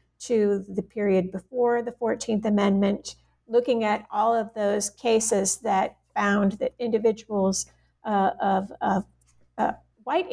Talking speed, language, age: 130 wpm, English, 50-69